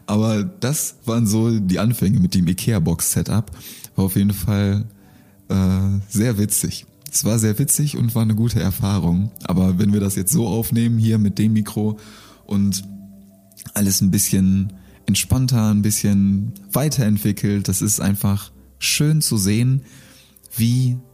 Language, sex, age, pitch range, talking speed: German, male, 20-39, 100-115 Hz, 145 wpm